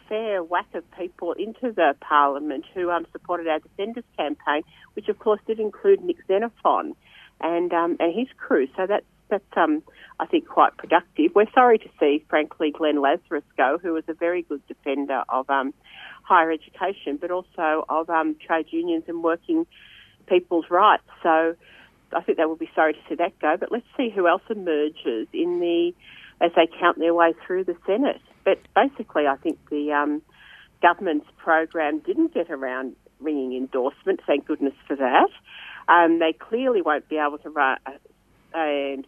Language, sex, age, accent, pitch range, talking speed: English, female, 50-69, Australian, 145-200 Hz, 175 wpm